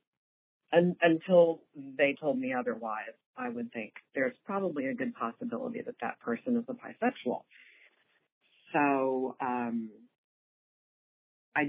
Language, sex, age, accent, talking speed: English, female, 40-59, American, 115 wpm